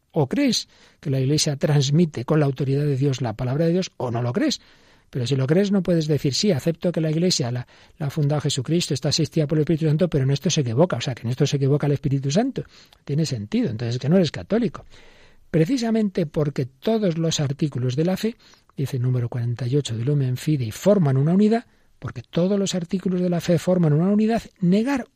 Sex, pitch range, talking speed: male, 135-185 Hz, 220 wpm